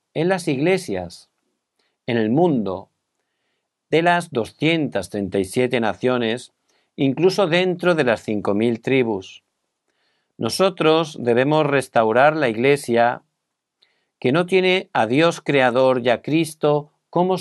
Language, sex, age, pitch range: Korean, male, 50-69, 115-165 Hz